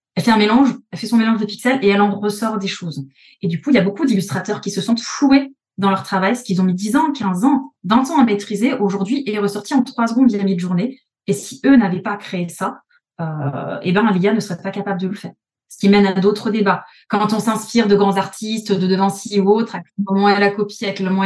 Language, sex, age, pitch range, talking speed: French, female, 20-39, 185-230 Hz, 275 wpm